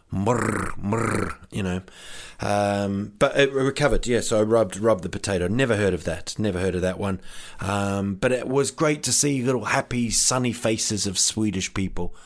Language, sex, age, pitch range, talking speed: English, male, 30-49, 105-150 Hz, 185 wpm